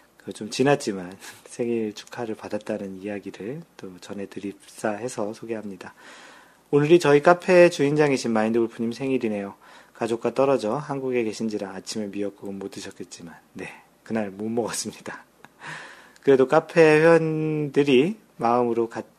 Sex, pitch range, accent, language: male, 105-135 Hz, native, Korean